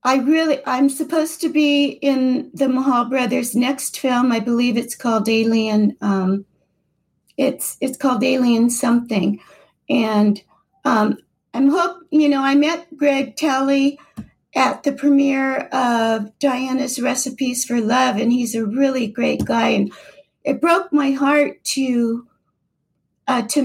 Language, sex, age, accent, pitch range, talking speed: English, female, 50-69, American, 235-290 Hz, 140 wpm